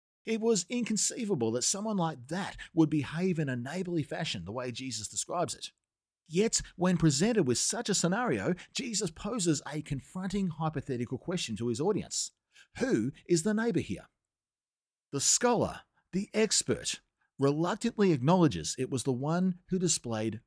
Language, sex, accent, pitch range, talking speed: English, male, Australian, 125-195 Hz, 150 wpm